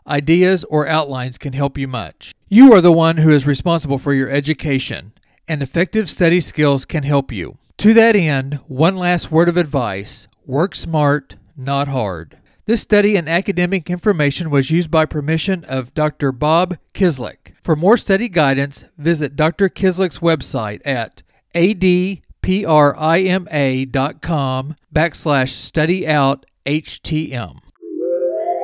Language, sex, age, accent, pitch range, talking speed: English, male, 40-59, American, 135-180 Hz, 130 wpm